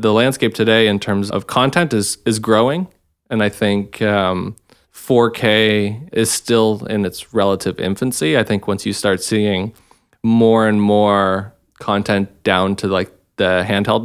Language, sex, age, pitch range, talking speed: English, male, 20-39, 100-115 Hz, 155 wpm